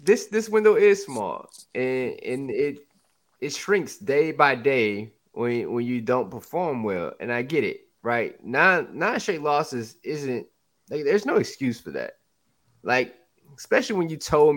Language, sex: English, male